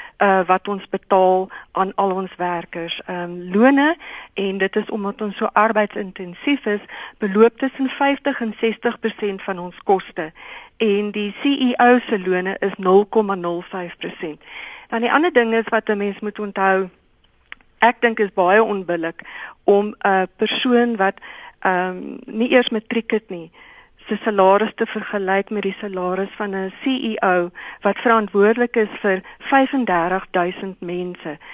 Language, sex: Dutch, female